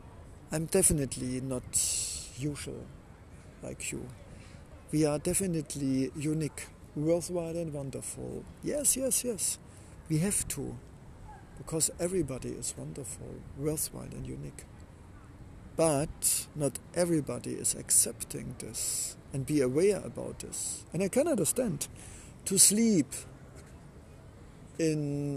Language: German